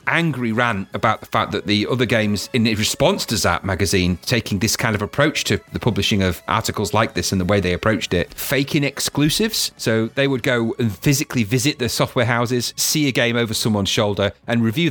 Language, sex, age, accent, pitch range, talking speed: English, male, 40-59, British, 100-130 Hz, 210 wpm